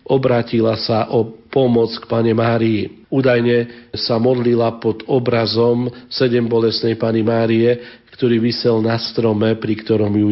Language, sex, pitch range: Slovak, male, 110-120 Hz